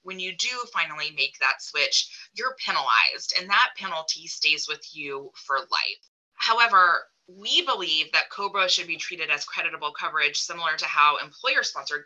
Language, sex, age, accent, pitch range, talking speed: English, female, 20-39, American, 140-175 Hz, 160 wpm